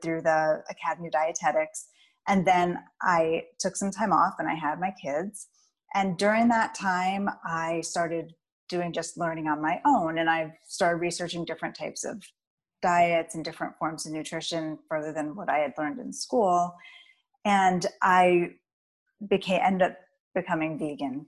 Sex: female